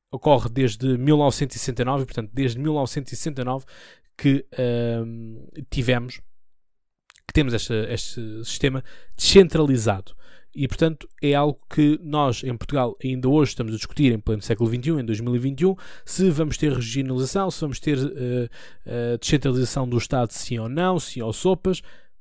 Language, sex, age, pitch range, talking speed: Portuguese, male, 20-39, 120-150 Hz, 140 wpm